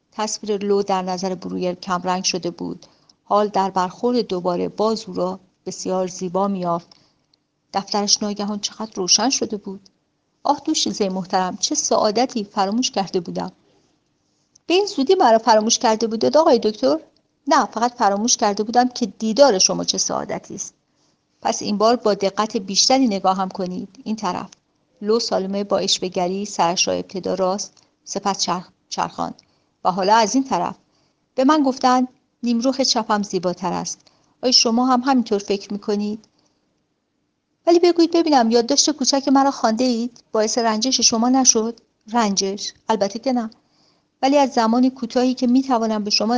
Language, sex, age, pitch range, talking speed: Persian, female, 50-69, 195-245 Hz, 150 wpm